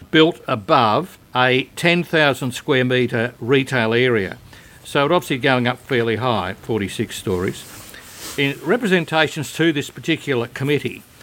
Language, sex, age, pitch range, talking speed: English, male, 60-79, 120-160 Hz, 125 wpm